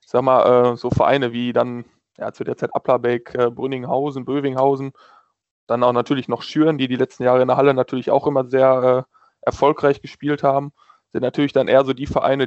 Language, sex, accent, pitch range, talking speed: German, male, German, 130-145 Hz, 195 wpm